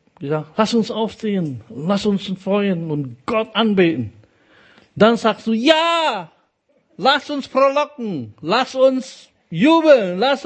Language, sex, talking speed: German, male, 120 wpm